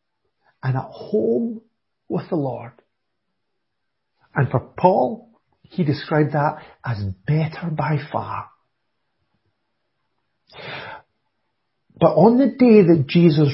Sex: male